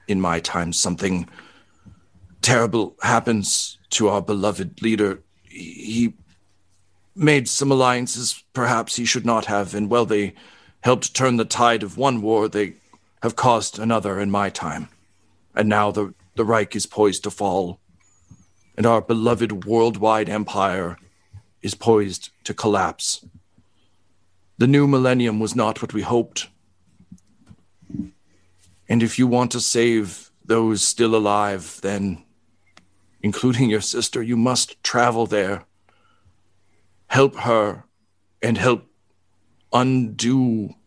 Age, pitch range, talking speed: 40-59, 95-120 Hz, 125 wpm